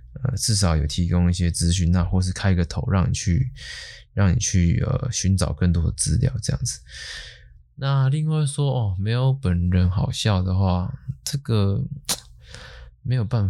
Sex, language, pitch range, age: male, Chinese, 90-125 Hz, 20-39